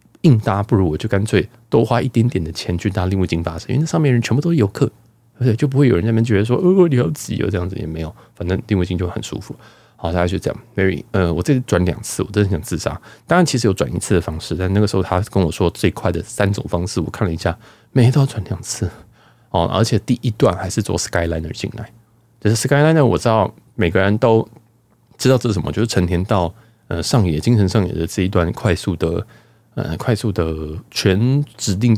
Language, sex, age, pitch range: Chinese, male, 20-39, 95-120 Hz